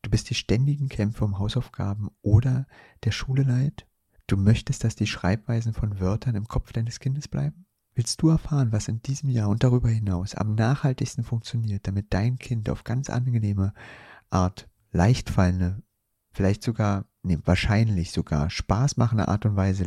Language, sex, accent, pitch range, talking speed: German, male, German, 95-125 Hz, 160 wpm